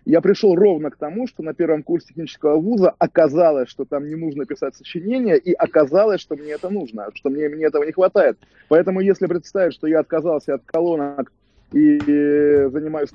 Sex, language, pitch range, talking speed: male, Russian, 140-175 Hz, 180 wpm